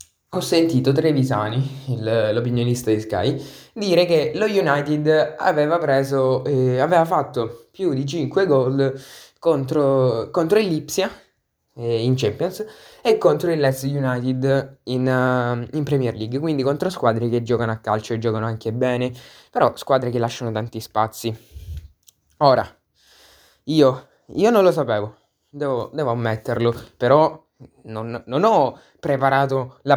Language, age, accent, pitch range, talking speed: Italian, 20-39, native, 125-160 Hz, 135 wpm